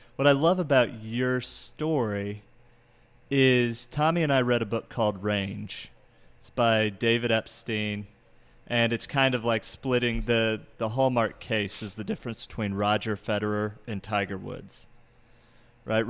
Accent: American